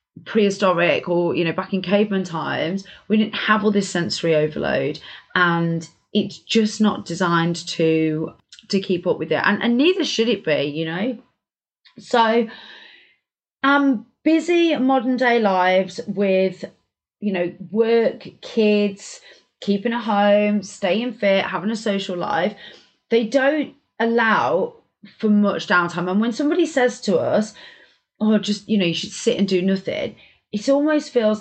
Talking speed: 150 wpm